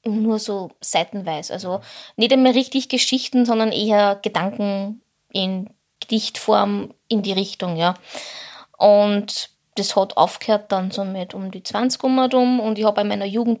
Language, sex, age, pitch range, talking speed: German, female, 20-39, 200-245 Hz, 150 wpm